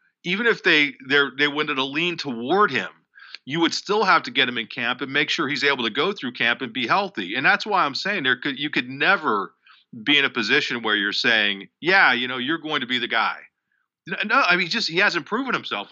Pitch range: 115-150 Hz